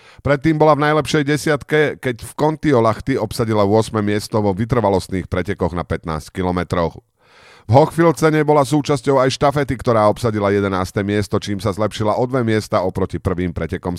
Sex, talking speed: male, 155 wpm